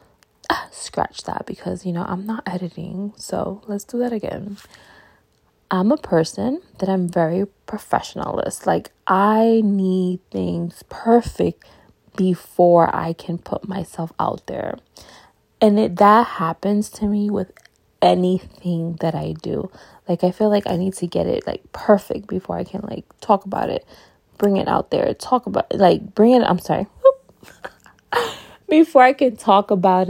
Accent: American